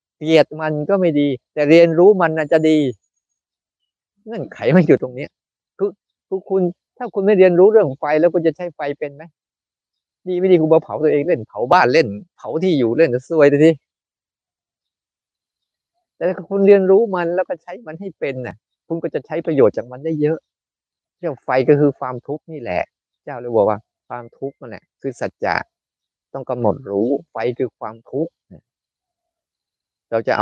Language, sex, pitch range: Thai, male, 115-170 Hz